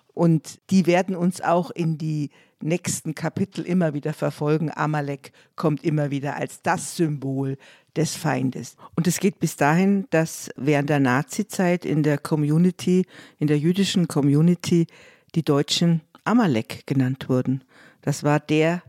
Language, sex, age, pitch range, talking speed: German, female, 50-69, 140-175 Hz, 145 wpm